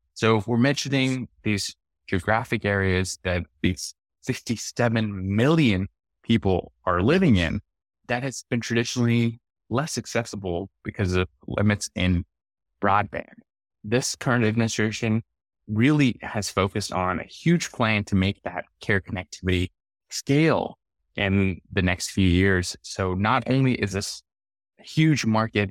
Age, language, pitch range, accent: 20-39, English, 90-115 Hz, American